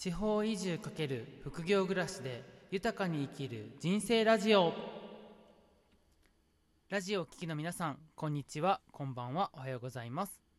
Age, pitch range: 20-39, 140-200 Hz